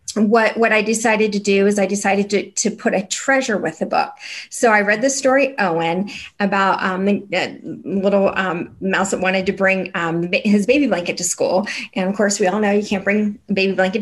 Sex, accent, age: female, American, 30-49